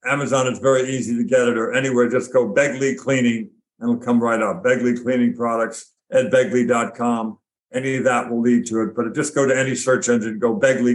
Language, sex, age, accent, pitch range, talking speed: English, male, 60-79, American, 125-140 Hz, 215 wpm